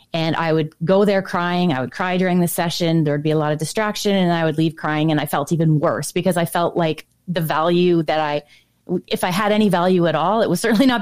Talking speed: 260 wpm